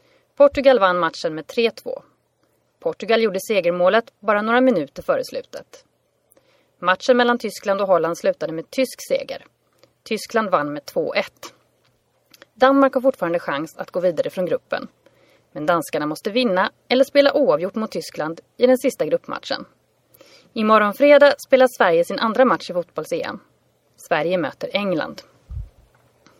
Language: Swedish